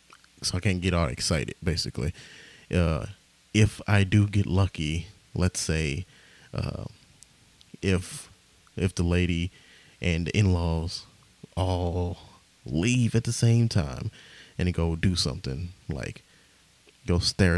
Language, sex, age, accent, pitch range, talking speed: English, male, 20-39, American, 85-105 Hz, 125 wpm